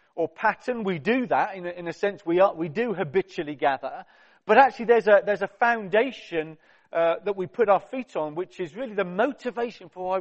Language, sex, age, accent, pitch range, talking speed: English, male, 40-59, British, 175-235 Hz, 220 wpm